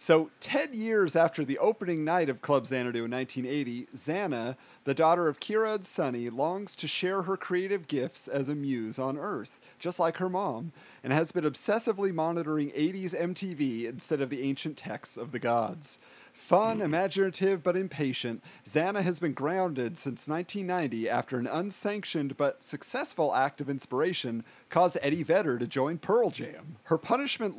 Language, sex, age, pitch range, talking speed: English, male, 40-59, 135-185 Hz, 165 wpm